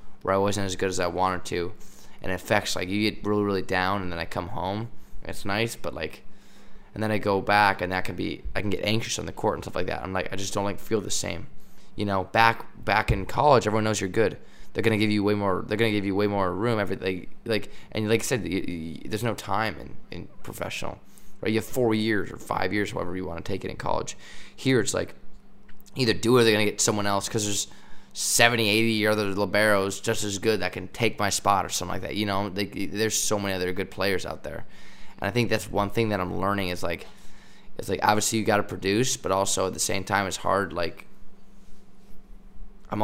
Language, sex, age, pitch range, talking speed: English, male, 20-39, 95-110 Hz, 245 wpm